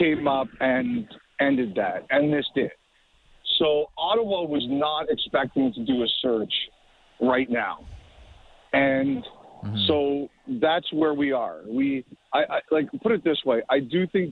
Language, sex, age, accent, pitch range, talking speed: English, male, 50-69, American, 130-170 Hz, 150 wpm